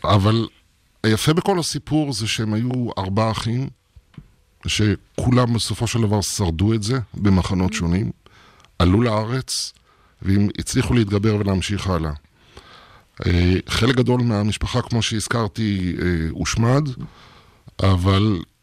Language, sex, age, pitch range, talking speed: Hebrew, male, 50-69, 95-115 Hz, 105 wpm